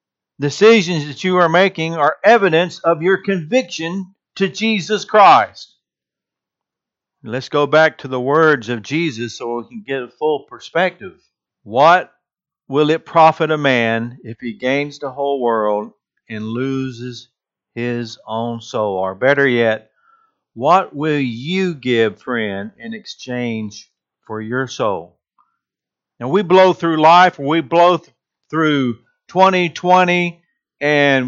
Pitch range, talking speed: 120-170 Hz, 130 wpm